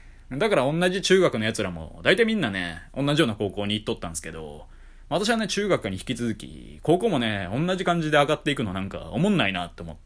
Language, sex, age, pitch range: Japanese, male, 20-39, 90-150 Hz